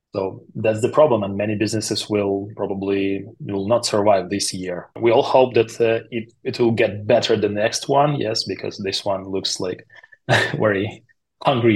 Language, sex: English, male